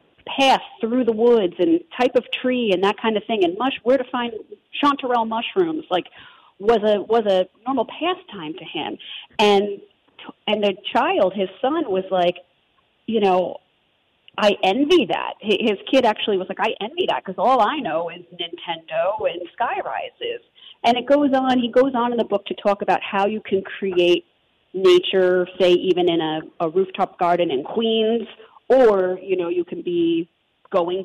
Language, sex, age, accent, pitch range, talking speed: English, female, 40-59, American, 175-240 Hz, 180 wpm